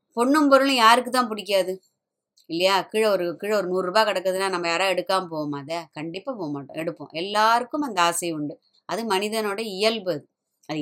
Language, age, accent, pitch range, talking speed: Tamil, 20-39, native, 180-230 Hz, 165 wpm